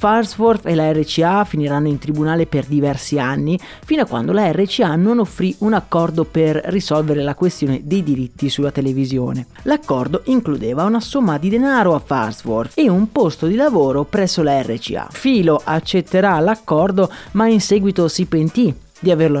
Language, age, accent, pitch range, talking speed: Italian, 30-49, native, 150-200 Hz, 165 wpm